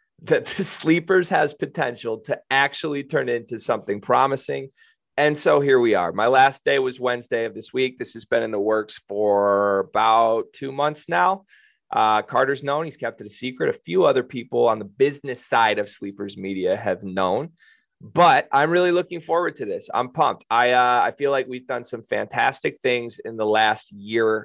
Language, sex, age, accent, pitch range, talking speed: English, male, 30-49, American, 110-155 Hz, 195 wpm